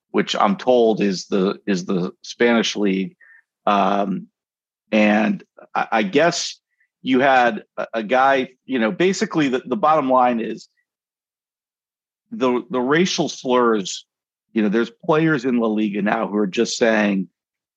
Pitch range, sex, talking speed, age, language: 105-125 Hz, male, 145 wpm, 50-69, English